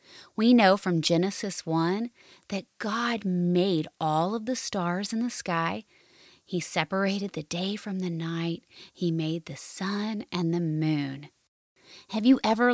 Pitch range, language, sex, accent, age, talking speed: 165-210 Hz, English, female, American, 30-49, 150 wpm